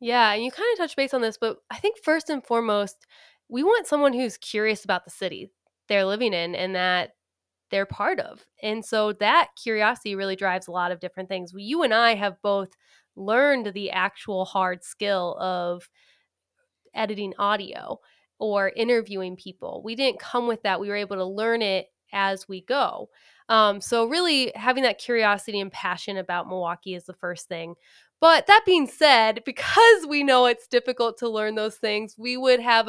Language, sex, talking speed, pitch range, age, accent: English, female, 185 wpm, 195-250 Hz, 20-39, American